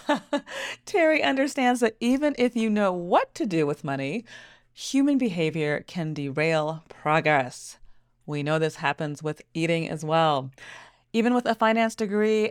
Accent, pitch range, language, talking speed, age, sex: American, 165-235 Hz, English, 145 wpm, 40-59, female